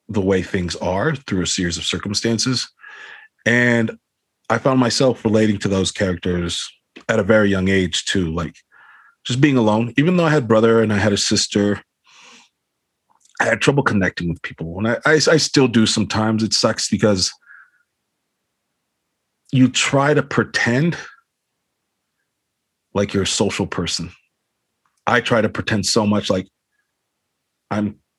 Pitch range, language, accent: 95-125 Hz, English, American